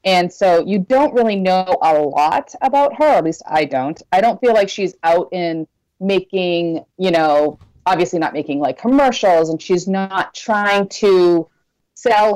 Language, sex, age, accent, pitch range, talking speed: English, female, 30-49, American, 160-215 Hz, 175 wpm